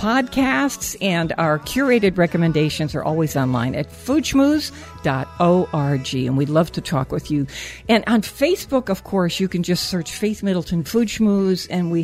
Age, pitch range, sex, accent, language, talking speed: 60-79, 165-220 Hz, female, American, English, 160 wpm